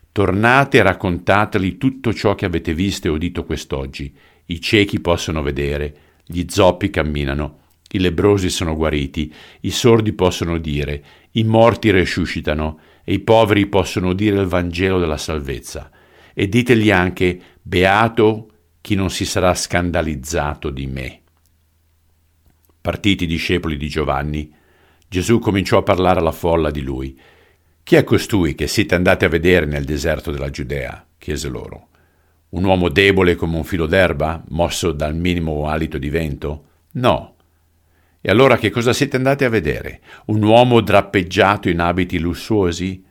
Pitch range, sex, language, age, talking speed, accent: 80-100 Hz, male, Italian, 50-69, 145 wpm, native